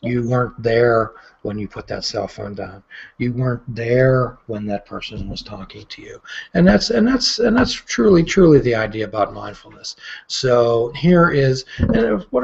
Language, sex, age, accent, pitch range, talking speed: English, male, 40-59, American, 110-155 Hz, 180 wpm